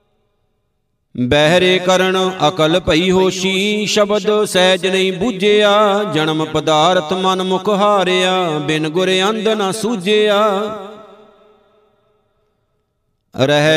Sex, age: male, 50-69